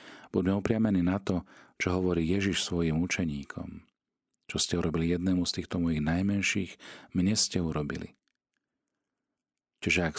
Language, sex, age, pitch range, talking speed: Slovak, male, 40-59, 80-95 Hz, 130 wpm